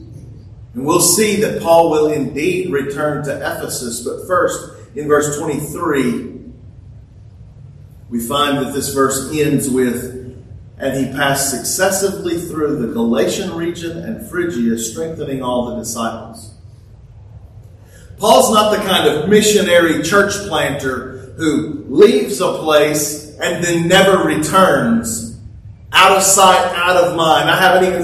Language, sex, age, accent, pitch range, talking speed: English, male, 40-59, American, 115-170 Hz, 130 wpm